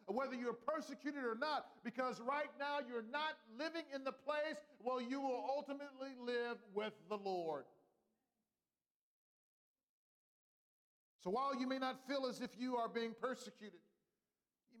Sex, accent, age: male, American, 50-69